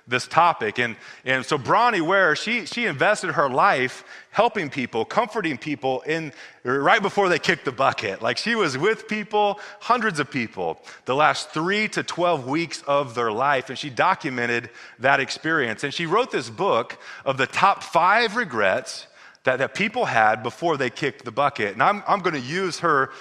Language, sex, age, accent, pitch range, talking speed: English, male, 30-49, American, 120-160 Hz, 180 wpm